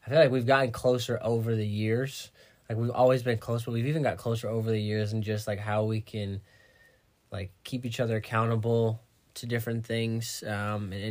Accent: American